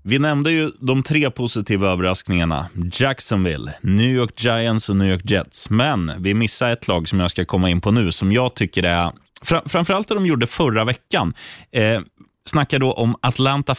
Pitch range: 95-135 Hz